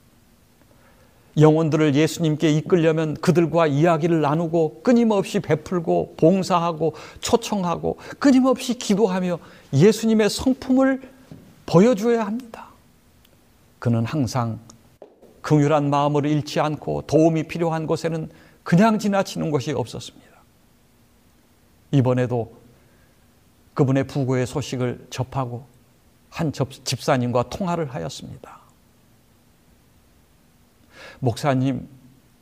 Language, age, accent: Korean, 60-79, native